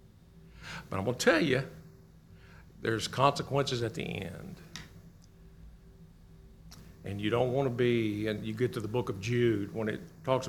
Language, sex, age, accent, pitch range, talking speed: English, male, 60-79, American, 110-145 Hz, 160 wpm